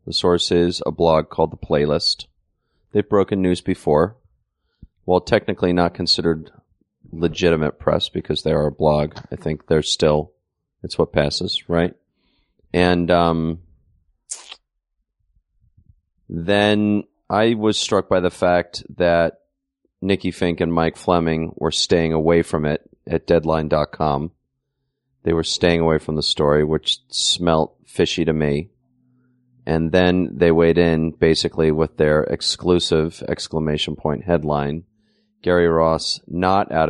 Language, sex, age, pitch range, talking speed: English, male, 30-49, 80-90 Hz, 130 wpm